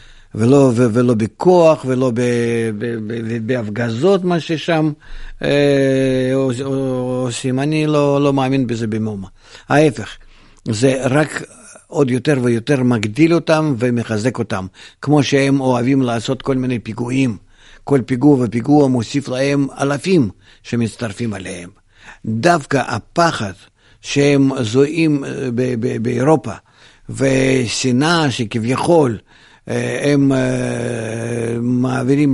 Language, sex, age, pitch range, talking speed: Hebrew, male, 50-69, 115-145 Hz, 100 wpm